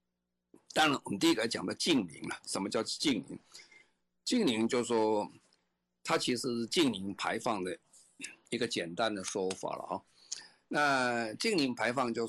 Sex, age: male, 50-69